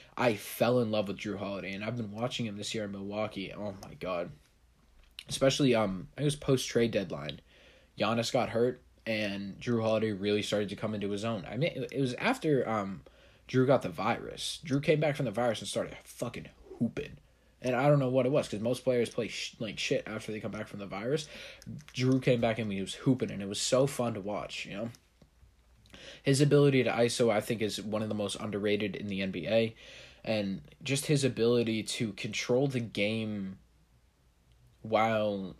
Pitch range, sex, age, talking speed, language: 100-125 Hz, male, 20-39, 205 wpm, English